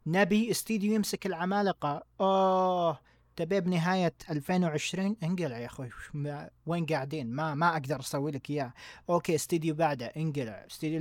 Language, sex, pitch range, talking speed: Arabic, male, 145-210 Hz, 130 wpm